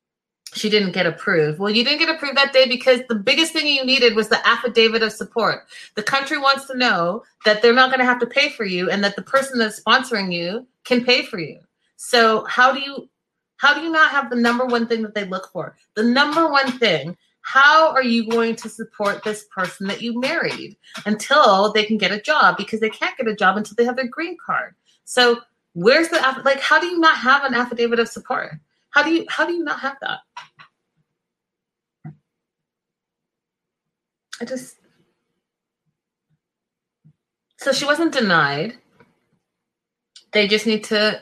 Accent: American